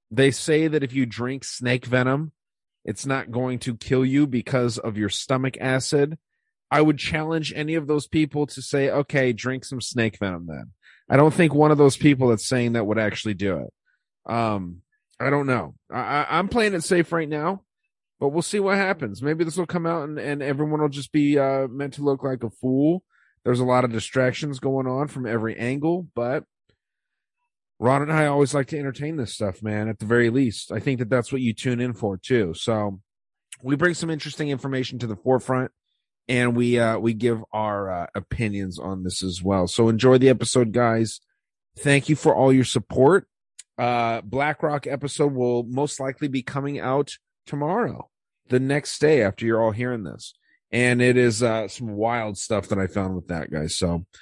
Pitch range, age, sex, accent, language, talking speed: 115-145 Hz, 30-49, male, American, English, 200 wpm